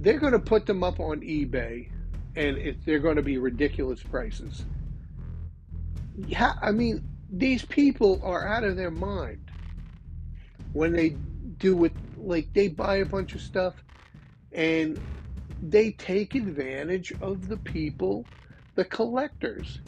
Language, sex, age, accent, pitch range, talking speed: English, male, 50-69, American, 130-190 Hz, 140 wpm